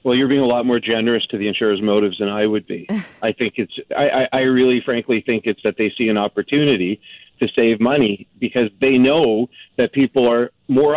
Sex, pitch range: male, 105-135 Hz